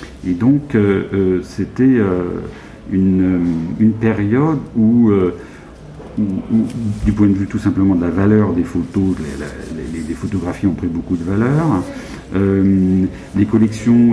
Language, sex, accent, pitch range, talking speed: French, male, French, 90-110 Hz, 160 wpm